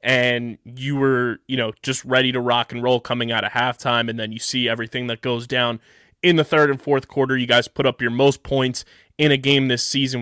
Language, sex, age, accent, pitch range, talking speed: English, male, 20-39, American, 115-135 Hz, 240 wpm